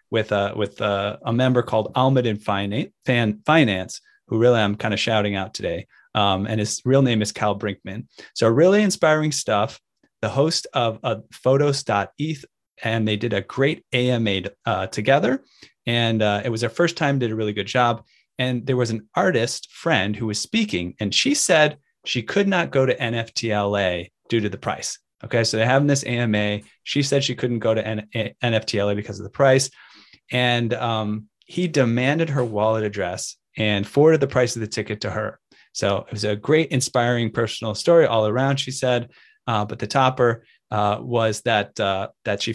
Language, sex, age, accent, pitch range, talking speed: English, male, 30-49, American, 105-130 Hz, 180 wpm